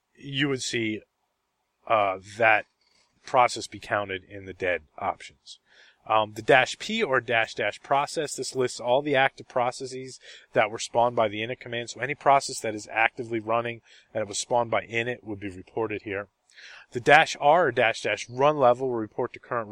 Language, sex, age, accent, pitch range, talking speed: English, male, 30-49, American, 120-165 Hz, 190 wpm